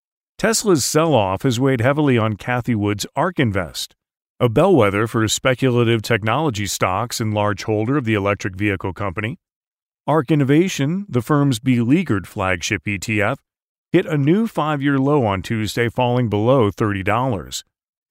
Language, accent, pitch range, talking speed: English, American, 110-145 Hz, 135 wpm